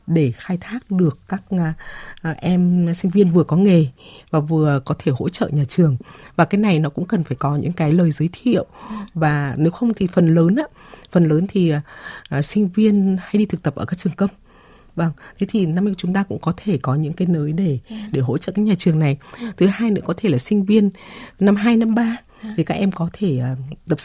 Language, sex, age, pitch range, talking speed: Vietnamese, female, 20-39, 155-205 Hz, 225 wpm